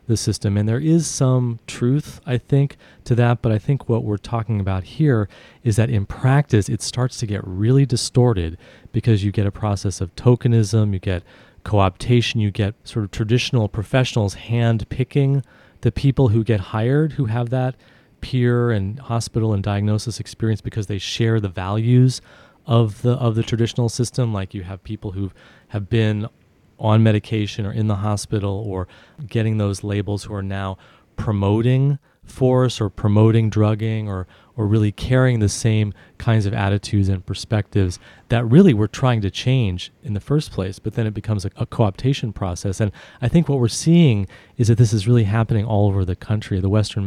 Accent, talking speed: American, 185 wpm